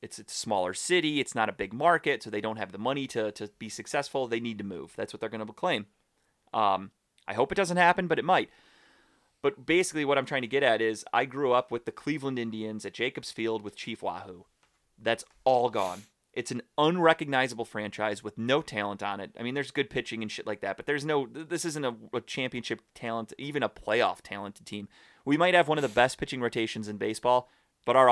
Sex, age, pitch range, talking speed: male, 30-49, 110-140 Hz, 230 wpm